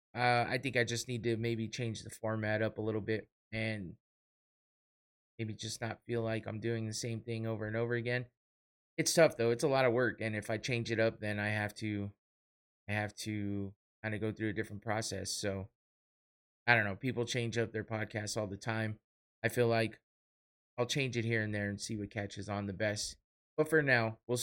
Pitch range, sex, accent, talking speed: 105-120 Hz, male, American, 220 wpm